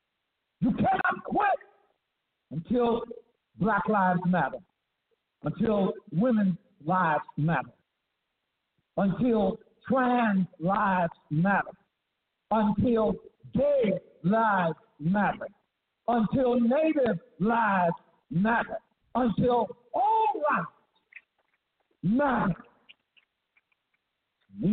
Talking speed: 65 wpm